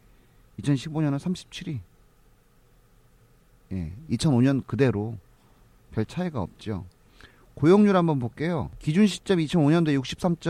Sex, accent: male, native